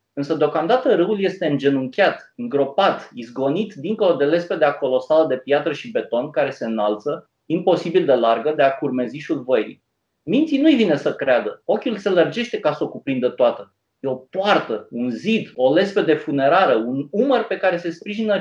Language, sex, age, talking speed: Romanian, male, 30-49, 170 wpm